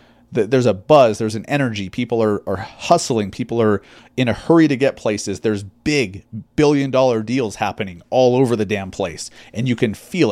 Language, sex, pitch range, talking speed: English, male, 115-135 Hz, 190 wpm